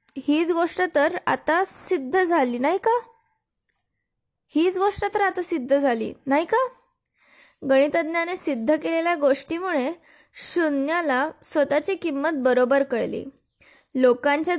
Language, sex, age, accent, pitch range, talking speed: Marathi, female, 20-39, native, 275-355 Hz, 105 wpm